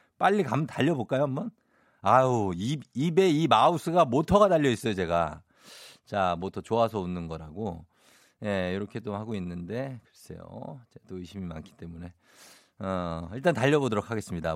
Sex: male